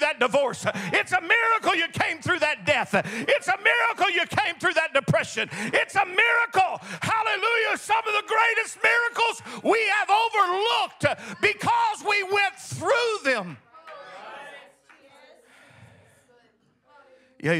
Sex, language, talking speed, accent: male, English, 125 wpm, American